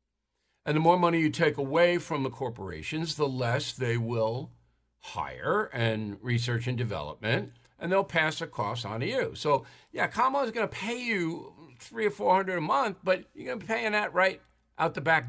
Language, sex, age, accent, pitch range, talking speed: English, male, 60-79, American, 110-165 Hz, 200 wpm